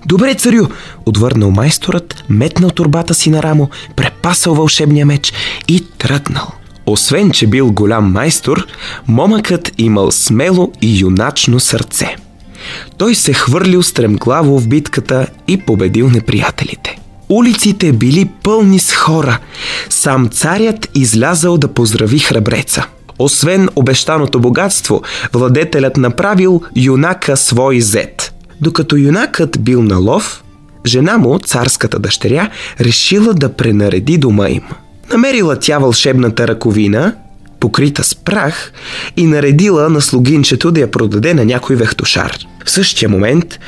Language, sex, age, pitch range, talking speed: Bulgarian, male, 20-39, 115-160 Hz, 120 wpm